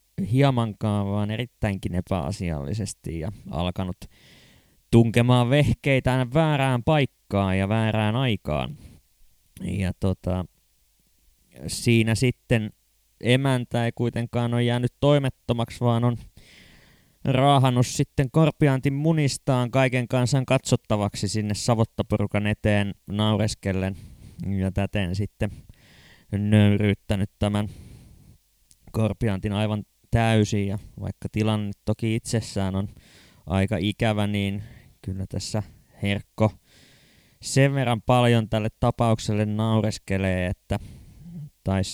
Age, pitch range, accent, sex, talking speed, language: 20-39, 100-125 Hz, native, male, 95 wpm, Finnish